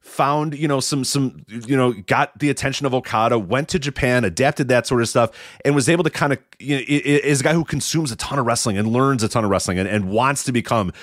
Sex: male